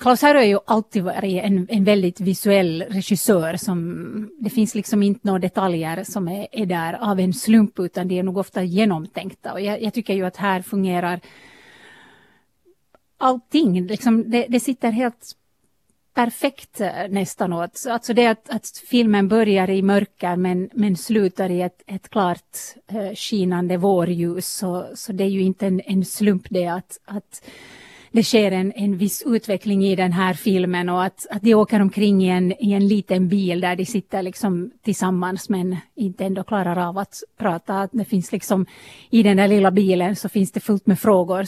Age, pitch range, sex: 30-49, 185-220 Hz, female